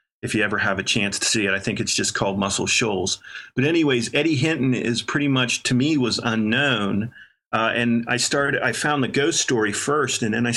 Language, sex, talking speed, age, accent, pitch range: English, male, 225 wpm, 40-59, American, 105-125 Hz